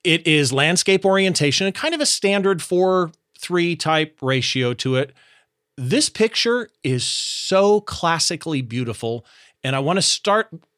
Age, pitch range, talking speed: 40-59, 130-180 Hz, 145 wpm